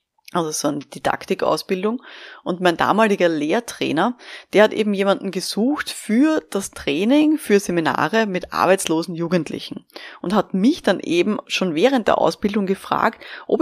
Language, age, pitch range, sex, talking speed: German, 20-39, 165-215 Hz, female, 140 wpm